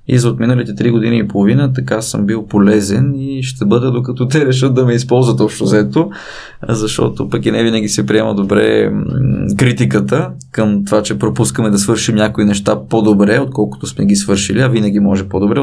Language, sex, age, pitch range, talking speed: Bulgarian, male, 20-39, 105-130 Hz, 180 wpm